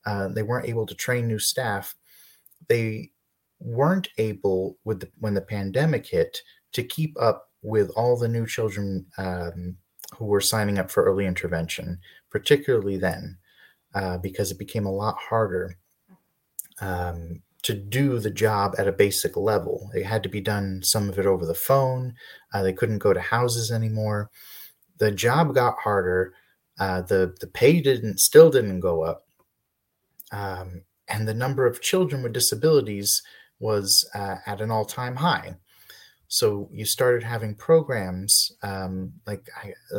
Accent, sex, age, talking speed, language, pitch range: American, male, 30-49, 155 wpm, English, 95-120 Hz